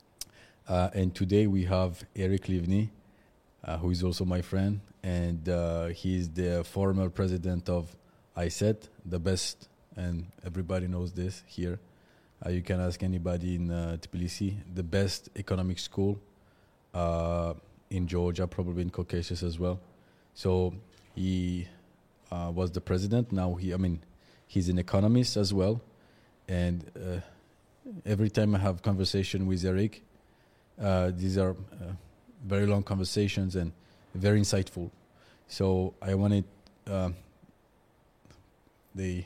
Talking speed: 130 wpm